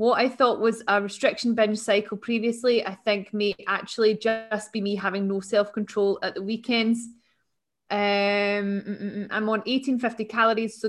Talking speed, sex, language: 155 wpm, female, English